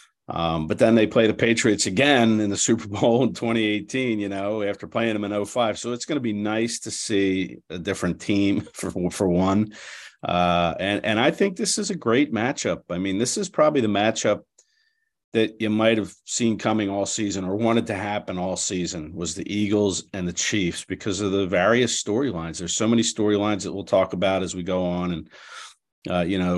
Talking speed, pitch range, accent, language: 210 wpm, 95-115 Hz, American, English